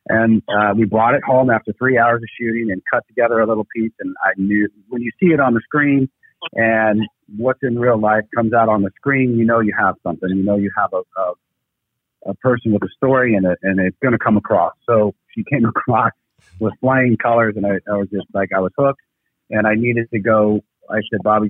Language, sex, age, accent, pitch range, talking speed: English, male, 40-59, American, 100-115 Hz, 235 wpm